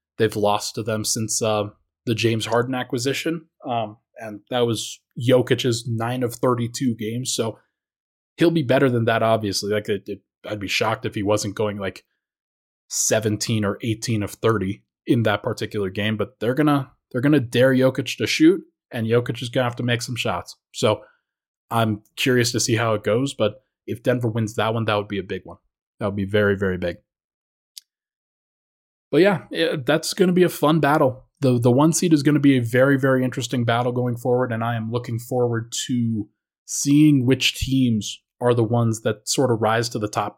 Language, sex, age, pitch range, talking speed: English, male, 20-39, 110-130 Hz, 200 wpm